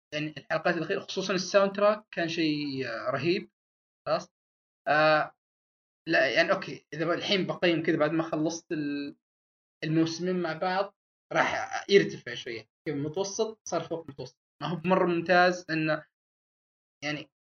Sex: male